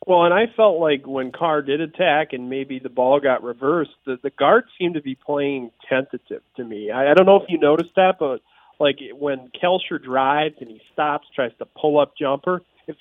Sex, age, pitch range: male, 40-59, 130-170 Hz